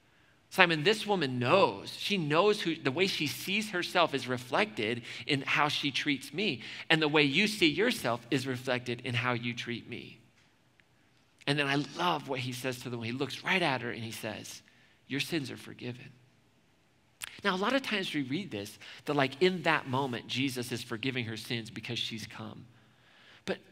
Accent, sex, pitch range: American, male, 115-150 Hz